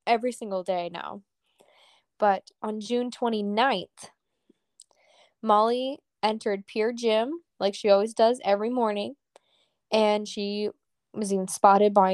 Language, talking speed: English, 120 wpm